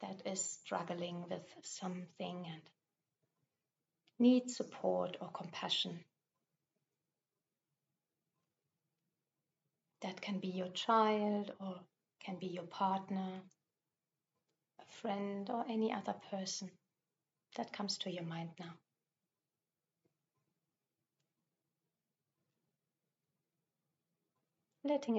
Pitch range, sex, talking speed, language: 165-200 Hz, female, 80 wpm, English